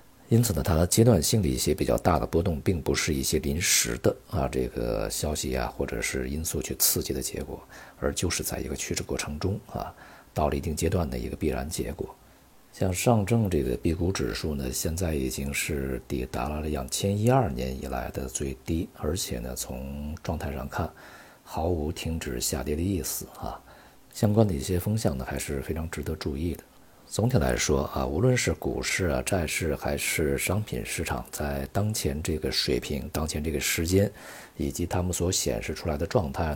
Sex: male